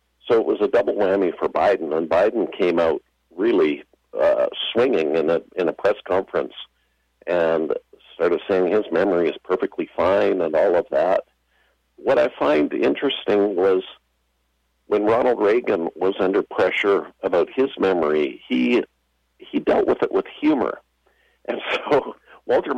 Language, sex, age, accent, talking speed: English, male, 50-69, American, 150 wpm